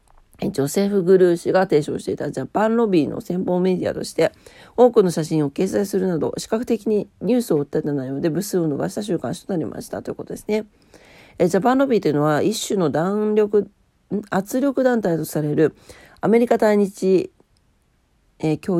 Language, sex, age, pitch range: Japanese, female, 40-59, 170-220 Hz